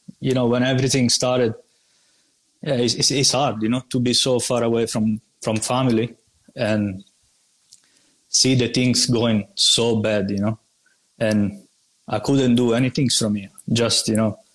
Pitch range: 110-120 Hz